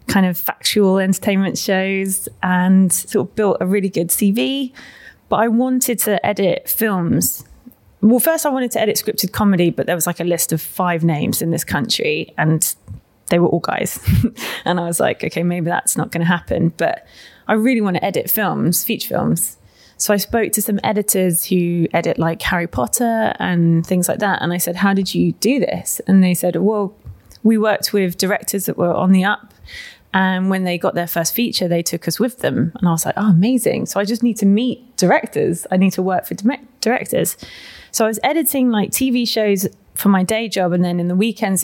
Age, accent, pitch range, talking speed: 20-39, British, 175-215 Hz, 210 wpm